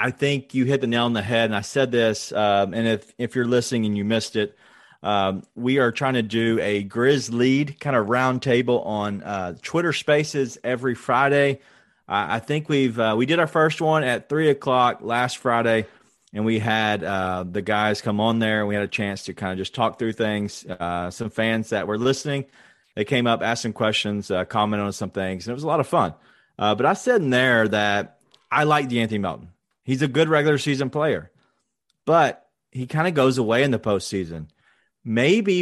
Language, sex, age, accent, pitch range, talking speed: English, male, 30-49, American, 105-140 Hz, 215 wpm